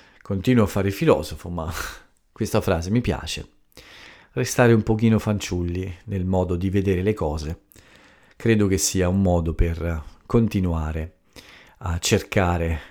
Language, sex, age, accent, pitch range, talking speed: Italian, male, 40-59, native, 85-100 Hz, 130 wpm